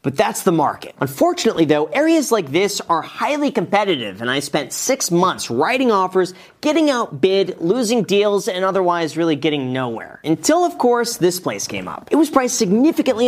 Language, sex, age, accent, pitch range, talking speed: English, male, 40-59, American, 155-230 Hz, 175 wpm